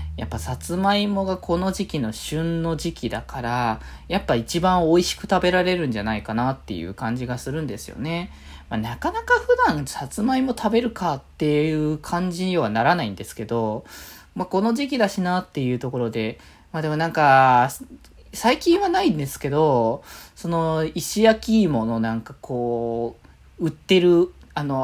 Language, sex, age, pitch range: Japanese, male, 20-39, 120-190 Hz